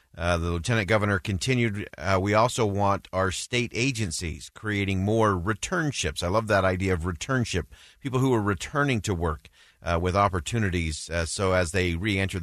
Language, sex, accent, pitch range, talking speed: English, male, American, 85-110 Hz, 170 wpm